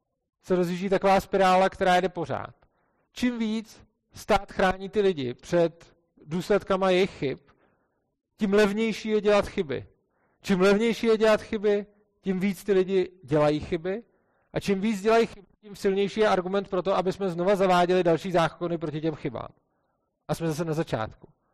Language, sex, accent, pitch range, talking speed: Czech, male, native, 155-195 Hz, 160 wpm